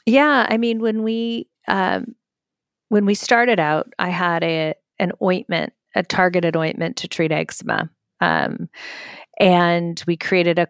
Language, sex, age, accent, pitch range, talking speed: English, female, 40-59, American, 160-190 Hz, 145 wpm